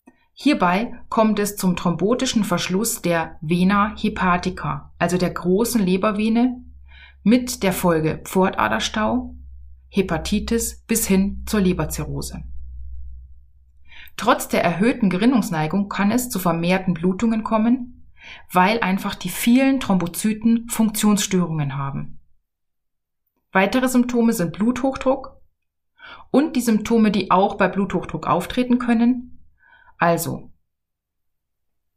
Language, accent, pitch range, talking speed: German, German, 160-225 Hz, 100 wpm